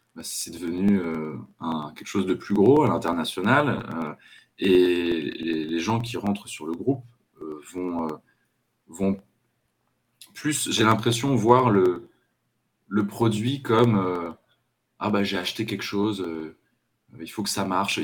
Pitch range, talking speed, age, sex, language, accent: 90-115 Hz, 155 wpm, 20-39, male, French, French